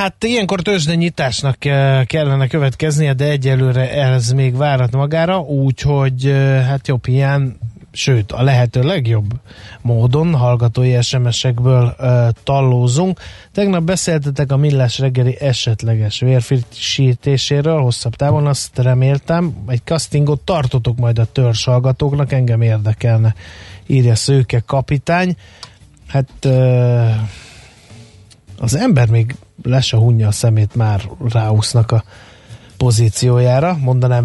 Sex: male